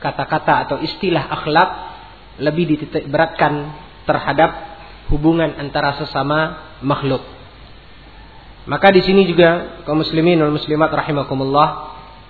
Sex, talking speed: male, 95 wpm